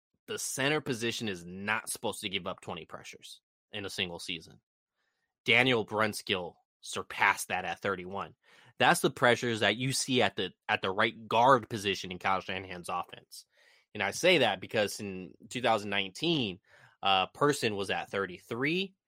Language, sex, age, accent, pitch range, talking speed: English, male, 20-39, American, 95-125 Hz, 160 wpm